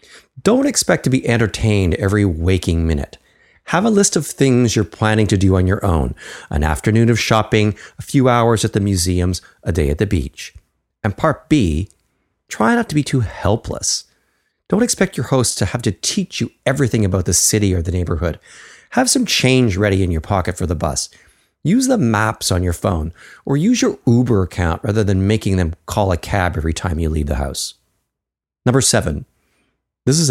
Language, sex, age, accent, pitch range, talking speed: English, male, 40-59, American, 90-130 Hz, 195 wpm